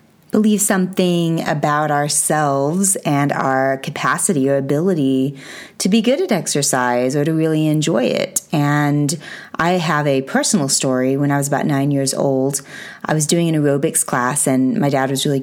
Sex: female